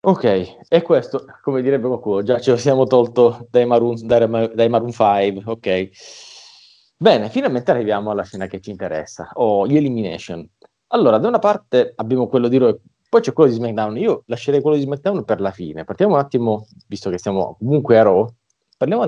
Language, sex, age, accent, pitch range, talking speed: Italian, male, 30-49, native, 100-125 Hz, 190 wpm